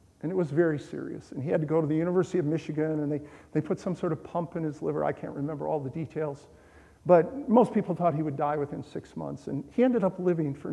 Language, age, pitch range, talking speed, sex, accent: English, 50-69, 150-185 Hz, 270 wpm, male, American